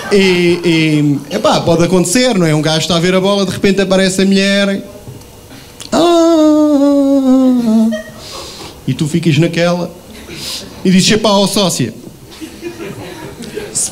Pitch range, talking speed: 170-205 Hz, 130 wpm